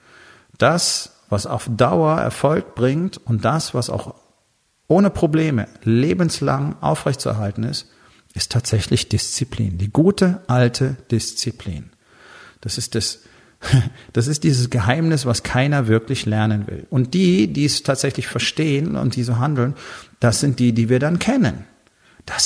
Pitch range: 110-140 Hz